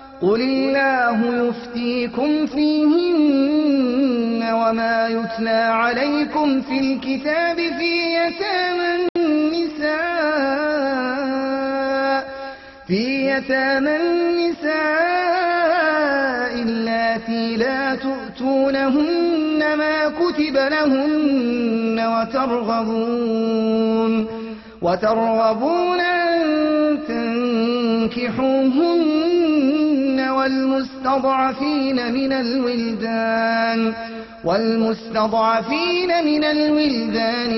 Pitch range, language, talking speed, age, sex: 235-305 Hz, French, 50 wpm, 30-49, male